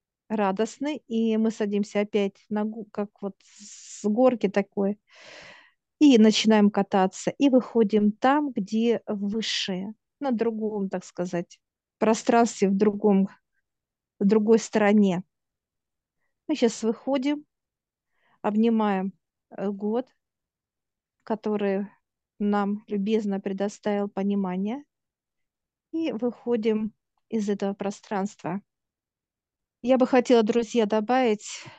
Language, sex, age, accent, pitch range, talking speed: Russian, female, 50-69, native, 200-230 Hz, 90 wpm